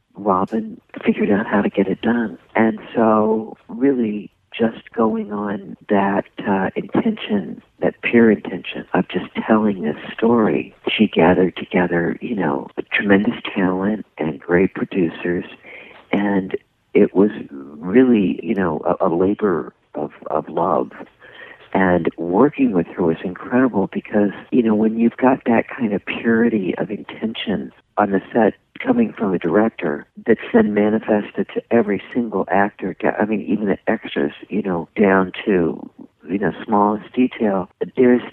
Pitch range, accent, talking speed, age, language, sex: 95-120 Hz, American, 145 wpm, 50-69, English, male